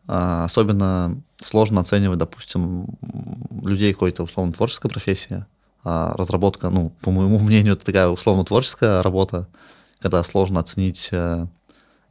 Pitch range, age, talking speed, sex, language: 90-105 Hz, 20-39, 100 wpm, male, Russian